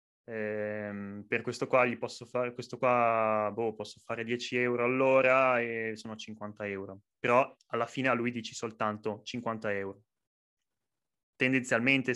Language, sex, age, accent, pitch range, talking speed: Italian, male, 20-39, native, 110-145 Hz, 145 wpm